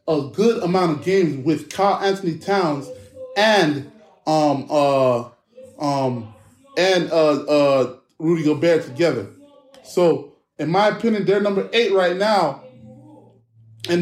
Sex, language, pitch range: male, English, 145-195 Hz